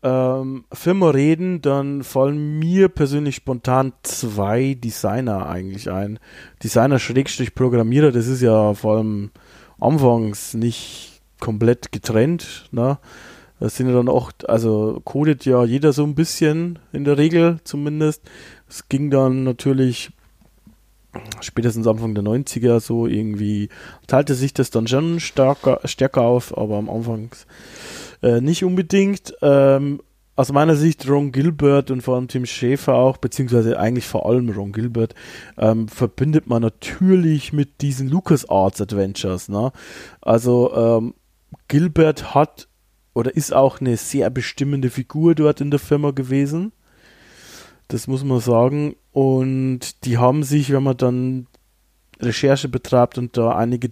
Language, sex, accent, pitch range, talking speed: German, male, German, 115-145 Hz, 140 wpm